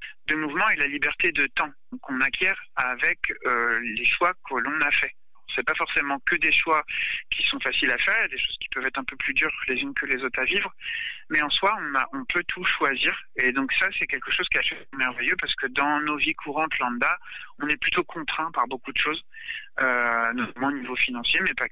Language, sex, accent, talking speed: French, male, French, 235 wpm